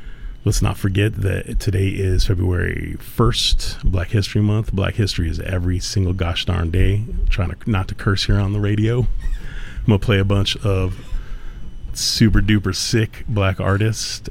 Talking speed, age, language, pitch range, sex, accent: 170 wpm, 30-49, English, 90-105 Hz, male, American